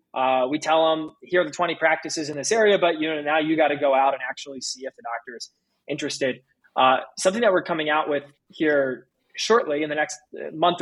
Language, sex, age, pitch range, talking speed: English, male, 20-39, 140-175 Hz, 235 wpm